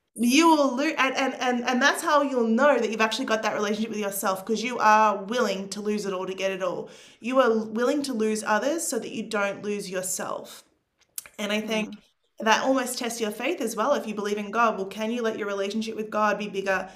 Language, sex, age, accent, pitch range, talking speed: English, female, 20-39, Australian, 200-235 Hz, 240 wpm